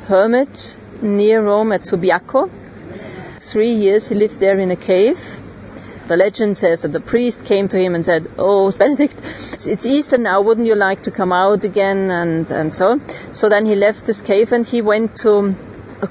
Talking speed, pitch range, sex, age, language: 190 wpm, 185-215 Hz, female, 40-59, English